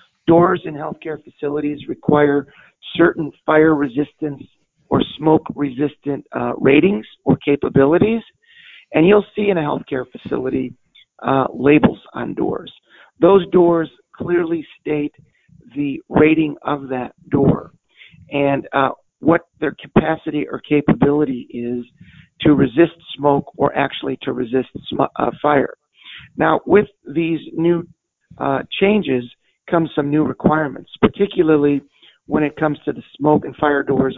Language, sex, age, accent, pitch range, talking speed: English, male, 50-69, American, 145-180 Hz, 125 wpm